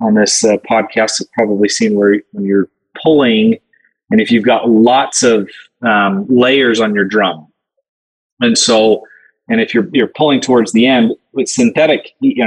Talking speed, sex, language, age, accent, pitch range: 170 wpm, male, English, 30-49, American, 105-125 Hz